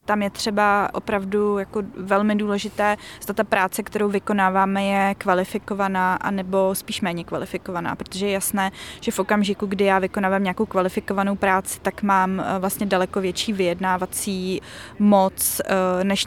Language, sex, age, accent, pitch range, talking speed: Czech, female, 20-39, native, 190-210 Hz, 140 wpm